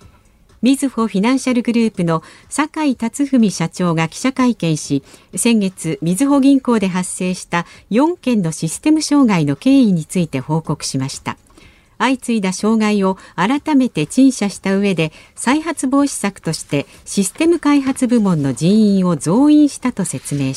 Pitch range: 165-255 Hz